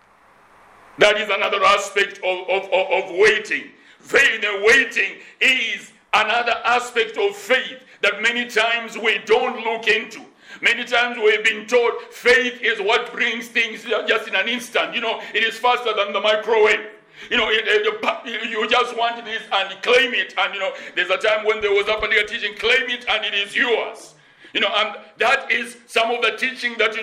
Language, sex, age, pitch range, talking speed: English, male, 60-79, 205-240 Hz, 195 wpm